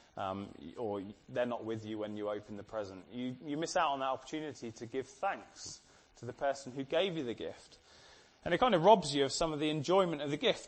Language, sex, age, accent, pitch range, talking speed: English, male, 20-39, British, 140-185 Hz, 240 wpm